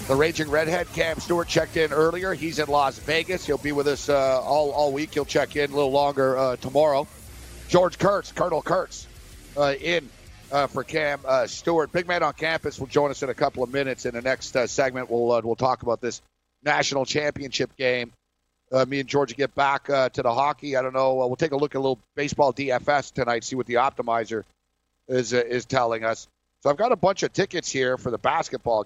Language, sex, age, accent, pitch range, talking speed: English, male, 50-69, American, 120-150 Hz, 225 wpm